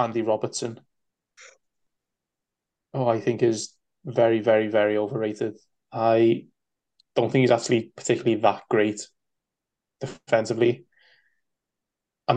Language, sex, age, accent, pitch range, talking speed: English, male, 20-39, British, 110-120 Hz, 95 wpm